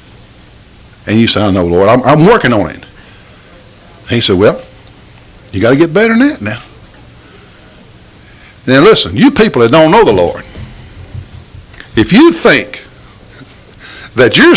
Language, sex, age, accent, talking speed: English, male, 60-79, American, 150 wpm